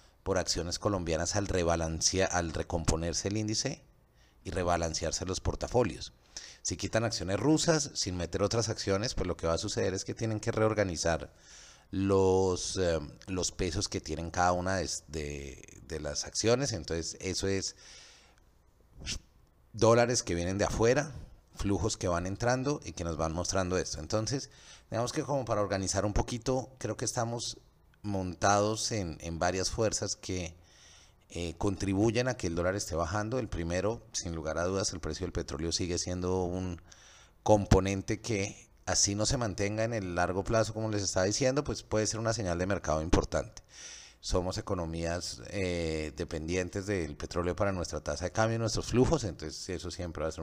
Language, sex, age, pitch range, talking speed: Spanish, male, 30-49, 85-110 Hz, 170 wpm